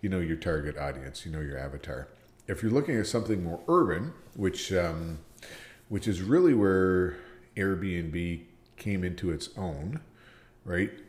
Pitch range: 80-95 Hz